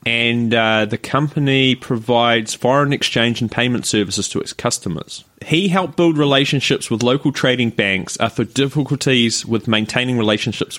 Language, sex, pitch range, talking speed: English, male, 105-140 Hz, 145 wpm